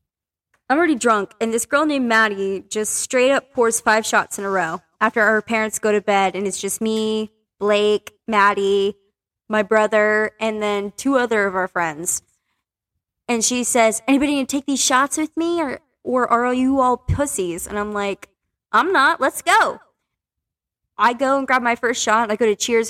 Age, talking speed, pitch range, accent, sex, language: 20-39, 190 wpm, 200-245 Hz, American, female, English